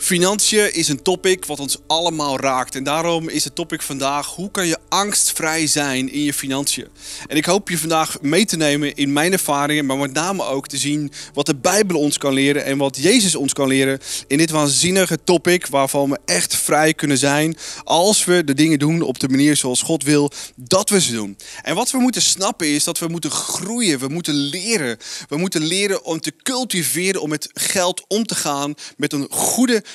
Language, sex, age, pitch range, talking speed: Dutch, male, 30-49, 145-185 Hz, 210 wpm